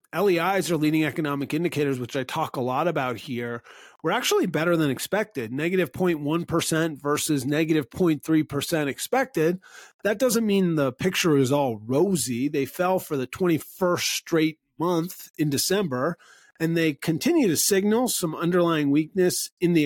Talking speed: 150 wpm